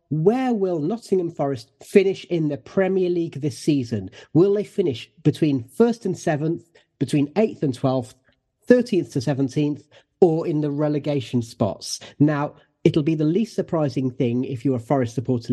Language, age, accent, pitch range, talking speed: English, 30-49, British, 130-175 Hz, 160 wpm